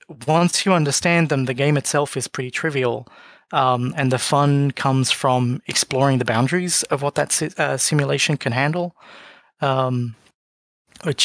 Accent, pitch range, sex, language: Australian, 125-150 Hz, male, English